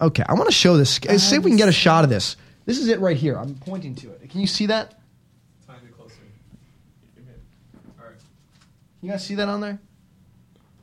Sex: male